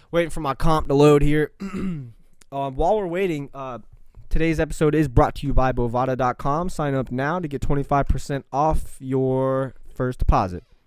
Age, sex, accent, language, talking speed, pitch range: 20-39, male, American, English, 165 wpm, 135-200 Hz